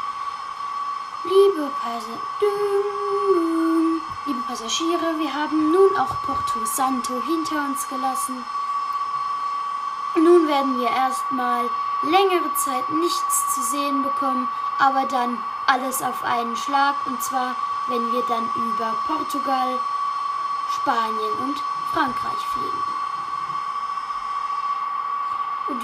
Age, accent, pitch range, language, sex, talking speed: 10-29, German, 285-380 Hz, German, female, 95 wpm